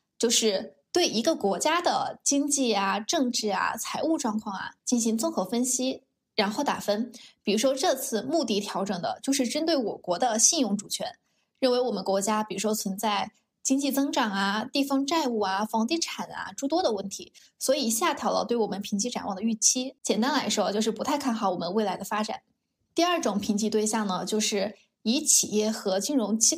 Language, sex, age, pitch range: Chinese, female, 20-39, 205-275 Hz